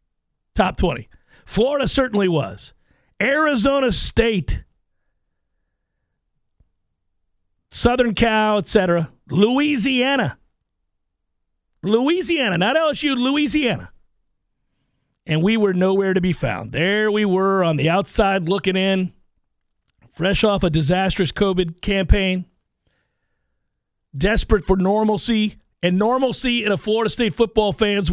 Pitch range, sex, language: 175-225 Hz, male, English